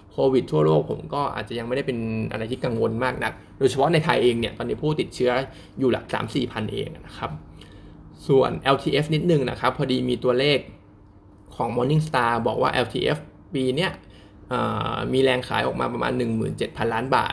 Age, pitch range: 20-39, 110-145 Hz